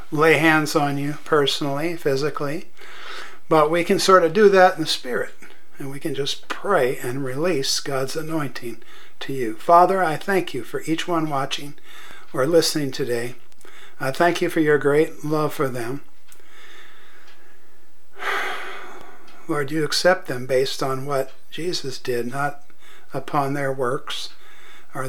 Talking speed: 145 wpm